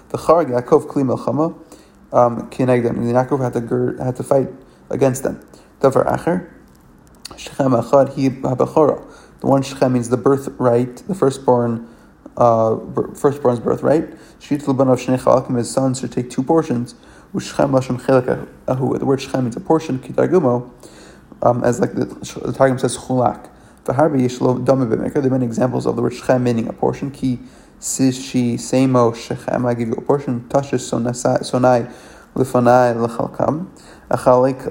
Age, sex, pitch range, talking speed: 30-49, male, 120-135 Hz, 100 wpm